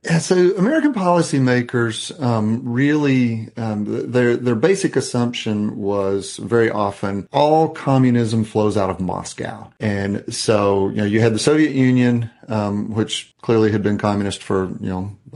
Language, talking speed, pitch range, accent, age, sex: English, 150 wpm, 100-125 Hz, American, 40-59, male